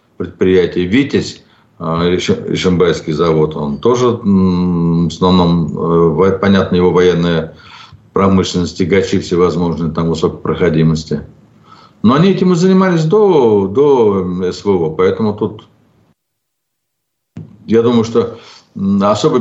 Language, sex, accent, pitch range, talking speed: Russian, male, native, 95-130 Hz, 110 wpm